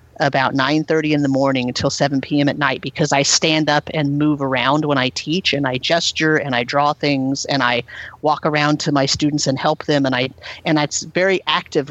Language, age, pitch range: English, 40-59, 135-155 Hz